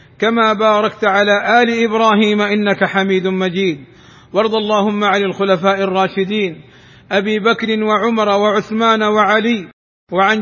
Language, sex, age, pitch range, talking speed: Arabic, male, 50-69, 195-220 Hz, 110 wpm